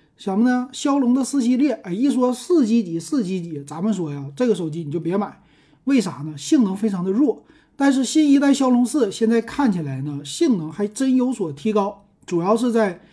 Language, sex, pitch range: Chinese, male, 165-235 Hz